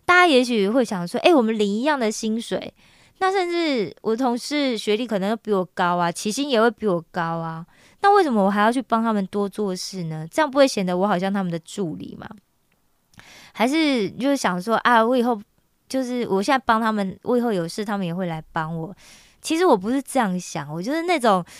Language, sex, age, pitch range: Korean, female, 20-39, 185-265 Hz